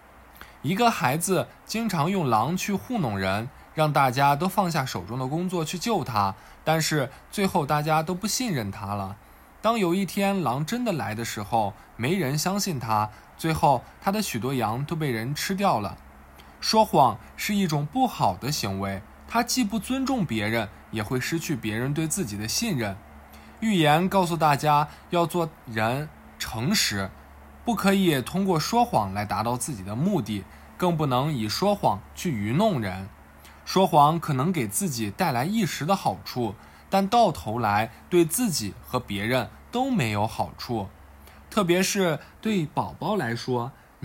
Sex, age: male, 20-39